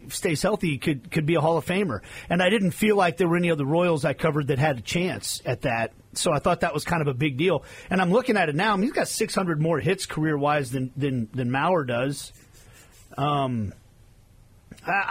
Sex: male